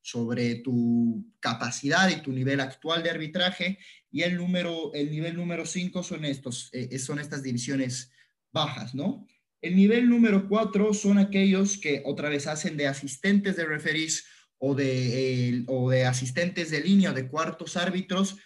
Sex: male